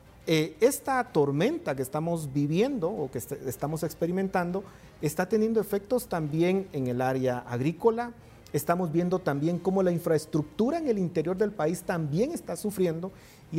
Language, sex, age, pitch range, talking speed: Spanish, male, 40-59, 140-205 Hz, 140 wpm